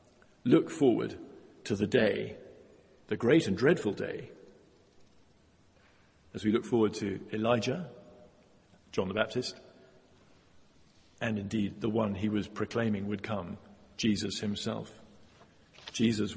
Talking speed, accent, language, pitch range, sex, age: 115 wpm, British, English, 110-125 Hz, male, 50-69